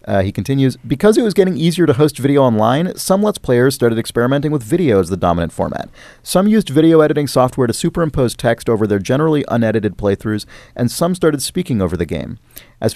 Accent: American